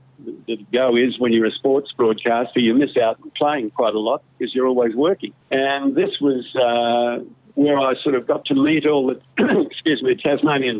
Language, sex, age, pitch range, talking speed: English, male, 50-69, 125-145 Hz, 200 wpm